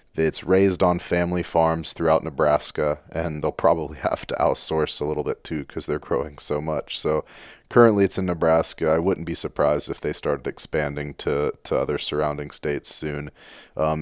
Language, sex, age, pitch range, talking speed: English, male, 30-49, 75-90 Hz, 180 wpm